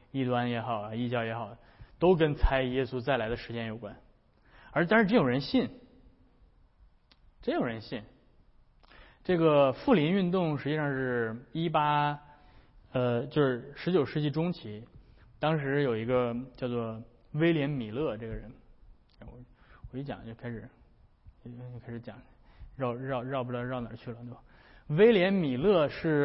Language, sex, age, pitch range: Chinese, male, 20-39, 120-150 Hz